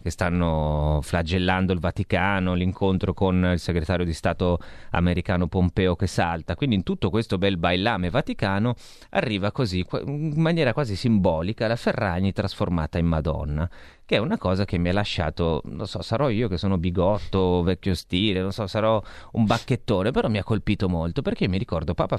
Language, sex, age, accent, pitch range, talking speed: Italian, male, 30-49, native, 90-110 Hz, 175 wpm